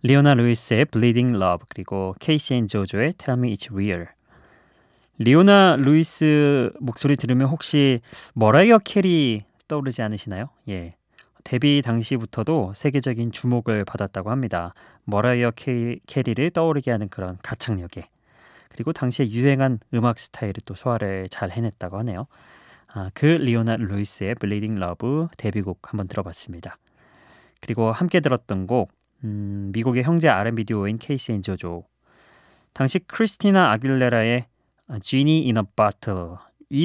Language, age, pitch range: Korean, 20-39, 105-140 Hz